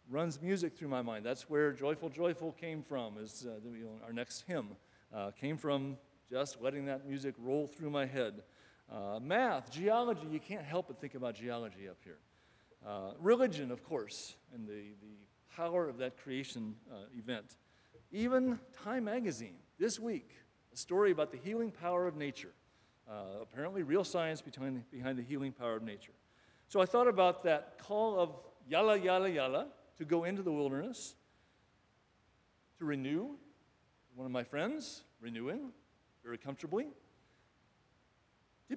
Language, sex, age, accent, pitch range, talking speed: English, male, 50-69, American, 125-195 Hz, 155 wpm